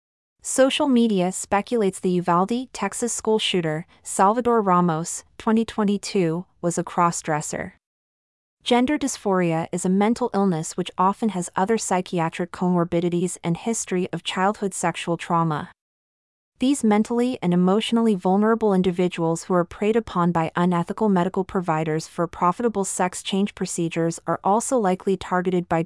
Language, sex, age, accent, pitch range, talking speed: English, female, 30-49, American, 170-210 Hz, 130 wpm